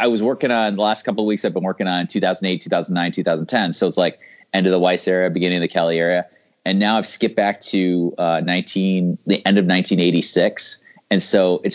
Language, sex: English, male